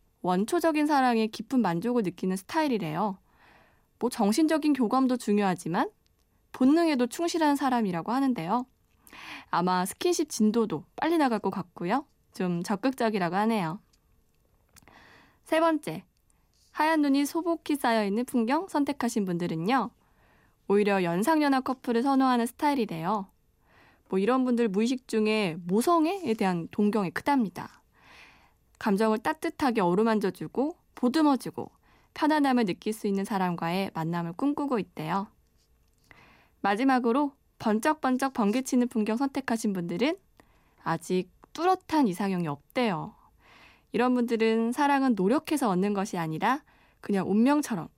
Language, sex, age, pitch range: Korean, female, 20-39, 195-280 Hz